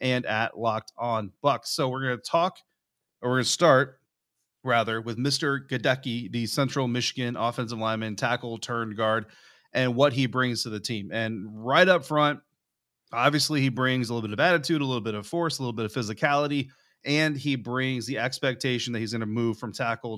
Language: English